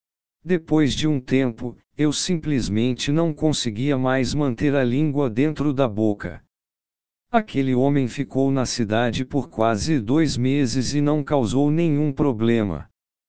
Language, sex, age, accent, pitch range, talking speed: Portuguese, male, 60-79, Brazilian, 120-145 Hz, 130 wpm